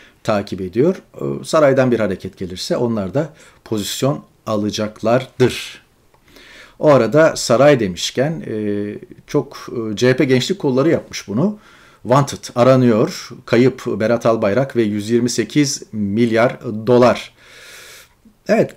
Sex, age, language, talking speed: male, 40-59, Turkish, 95 wpm